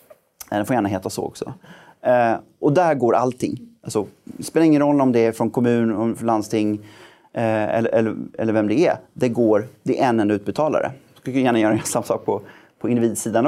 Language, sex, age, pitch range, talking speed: Swedish, male, 30-49, 105-150 Hz, 200 wpm